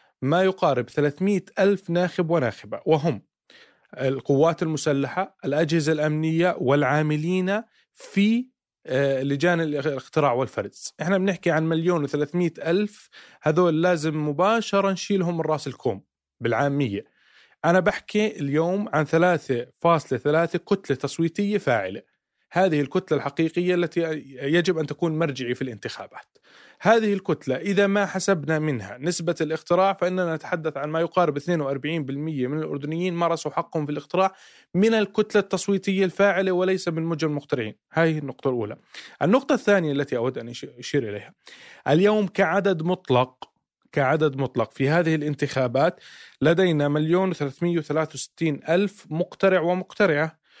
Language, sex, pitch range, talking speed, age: Arabic, male, 145-185 Hz, 115 wpm, 30-49